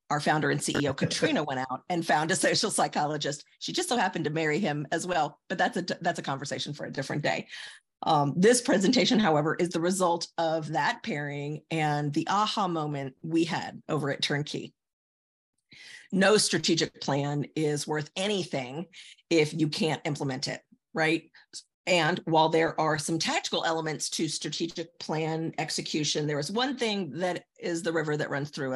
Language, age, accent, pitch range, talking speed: English, 50-69, American, 155-200 Hz, 175 wpm